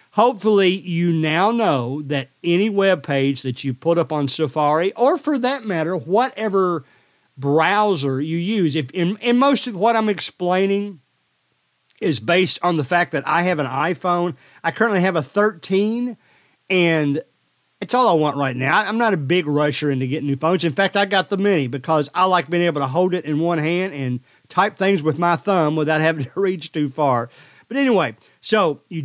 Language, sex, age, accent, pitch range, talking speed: English, male, 40-59, American, 150-195 Hz, 195 wpm